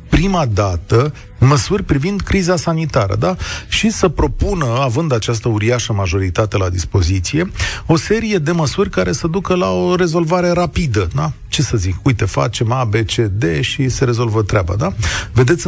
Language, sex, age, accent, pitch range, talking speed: Romanian, male, 30-49, native, 115-165 Hz, 165 wpm